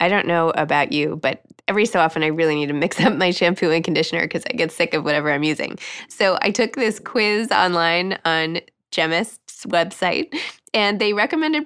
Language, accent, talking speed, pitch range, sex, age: English, American, 200 wpm, 165-225 Hz, female, 20-39